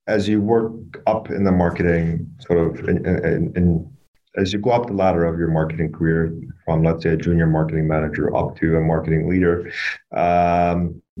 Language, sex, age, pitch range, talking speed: English, male, 30-49, 85-100 Hz, 190 wpm